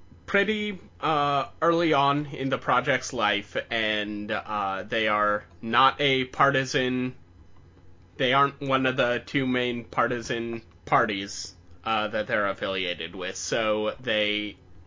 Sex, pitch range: male, 95-125 Hz